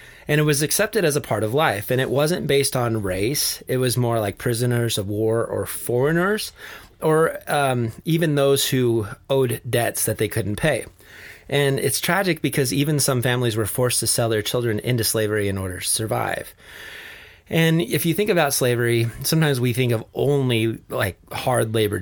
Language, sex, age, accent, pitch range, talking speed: English, male, 30-49, American, 110-140 Hz, 185 wpm